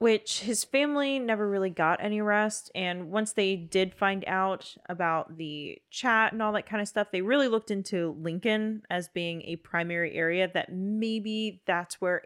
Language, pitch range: English, 170-215 Hz